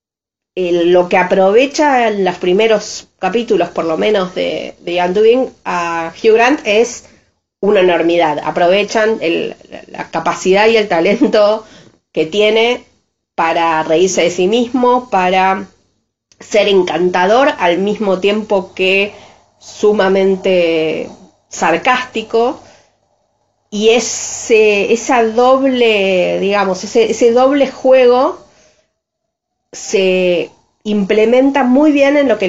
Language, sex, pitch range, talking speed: Spanish, female, 180-230 Hz, 110 wpm